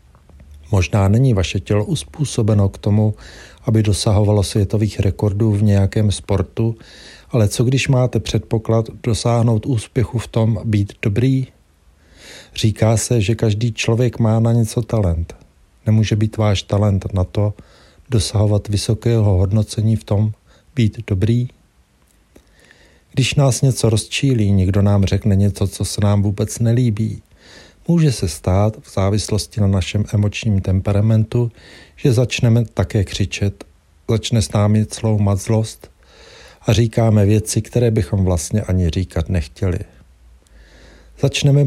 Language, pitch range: Czech, 100-115 Hz